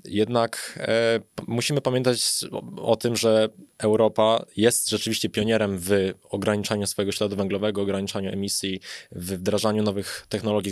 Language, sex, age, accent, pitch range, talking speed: Polish, male, 20-39, native, 95-110 Hz, 125 wpm